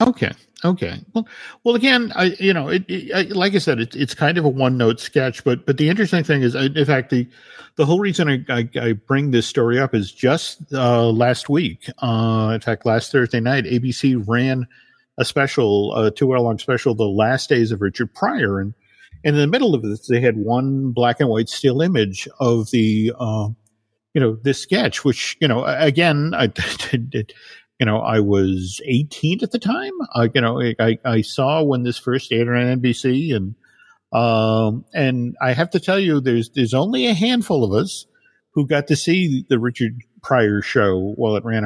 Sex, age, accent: male, 50-69, American